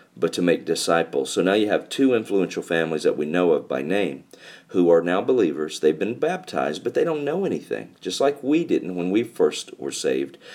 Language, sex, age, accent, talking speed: English, male, 50-69, American, 215 wpm